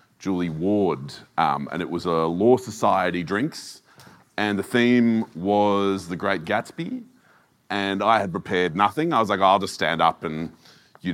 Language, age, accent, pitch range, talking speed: English, 30-49, Australian, 90-115 Hz, 165 wpm